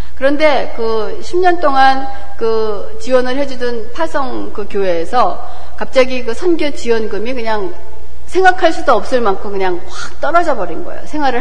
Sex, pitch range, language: female, 185-275 Hz, Korean